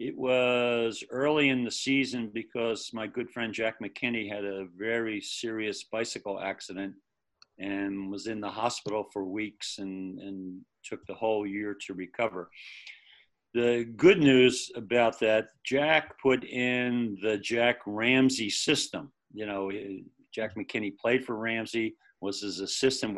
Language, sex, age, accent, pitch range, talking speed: English, male, 50-69, American, 105-125 Hz, 140 wpm